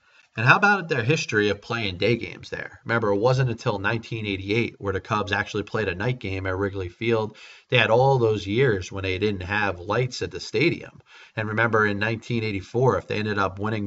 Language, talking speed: English, 210 wpm